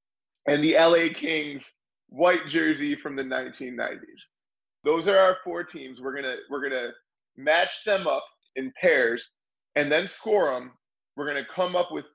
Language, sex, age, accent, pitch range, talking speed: English, male, 20-39, American, 135-195 Hz, 170 wpm